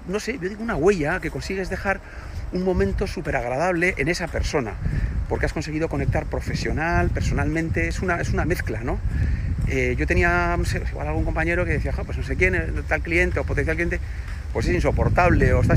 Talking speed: 195 wpm